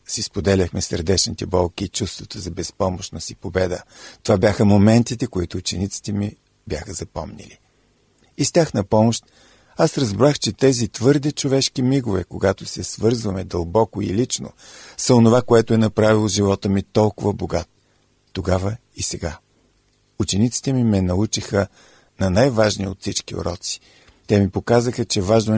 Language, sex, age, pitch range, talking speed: Bulgarian, male, 50-69, 95-115 Hz, 145 wpm